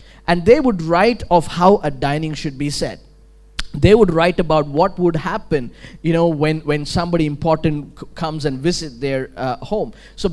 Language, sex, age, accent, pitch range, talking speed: English, male, 20-39, Indian, 160-235 Hz, 185 wpm